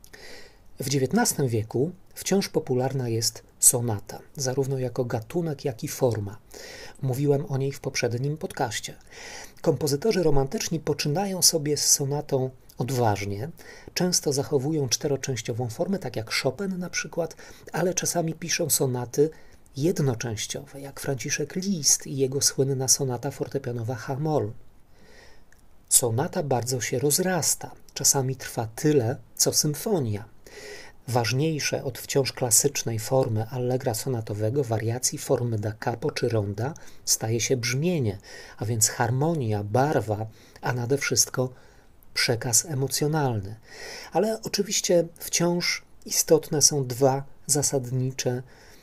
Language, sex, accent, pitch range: Polish, male, native, 120-150 Hz